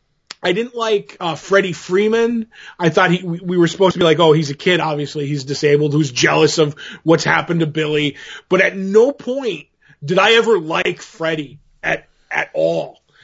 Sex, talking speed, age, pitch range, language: male, 185 wpm, 20-39, 155-200 Hz, English